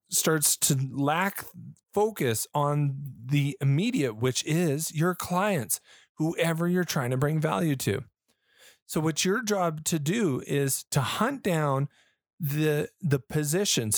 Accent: American